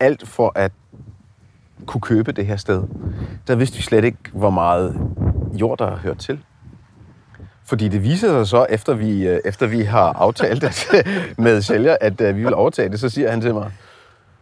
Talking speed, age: 185 wpm, 30-49